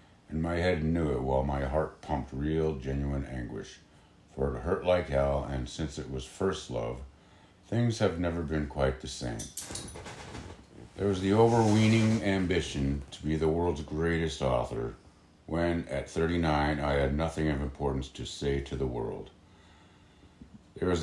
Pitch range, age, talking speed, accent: 70-85 Hz, 60-79, 160 wpm, American